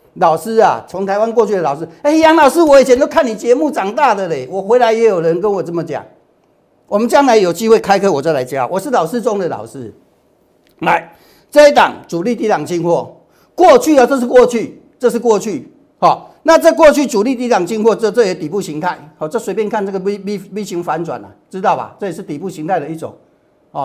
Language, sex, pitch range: Chinese, male, 155-230 Hz